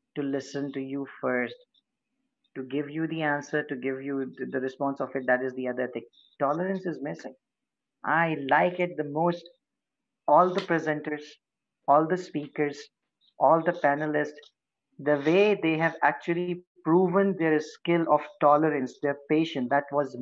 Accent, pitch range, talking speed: Indian, 150-205 Hz, 155 wpm